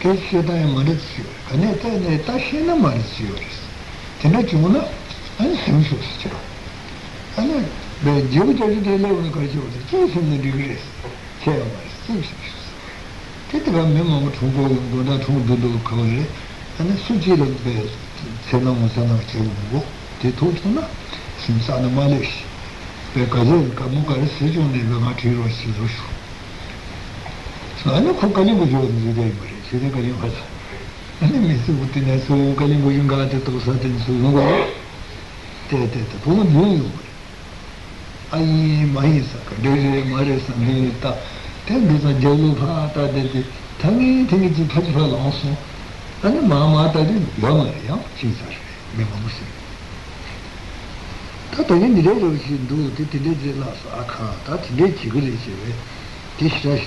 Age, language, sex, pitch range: 60-79, Italian, male, 115-155 Hz